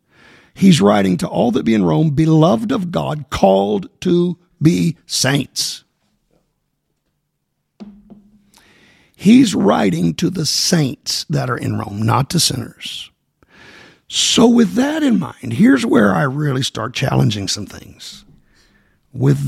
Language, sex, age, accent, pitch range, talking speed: English, male, 50-69, American, 95-155 Hz, 125 wpm